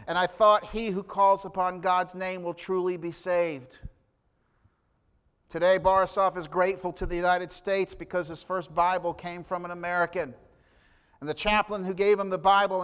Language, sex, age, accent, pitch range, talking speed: English, male, 50-69, American, 165-195 Hz, 175 wpm